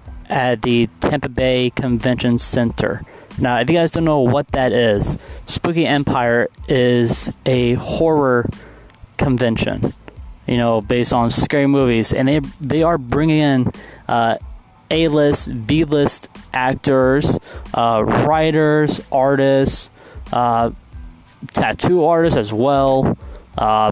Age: 20-39